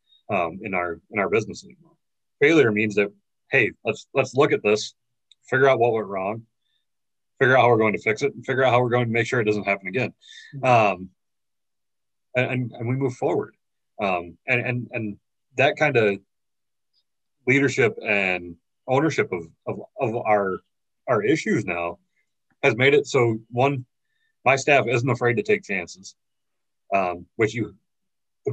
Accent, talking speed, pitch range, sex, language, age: American, 170 wpm, 95-125 Hz, male, English, 30-49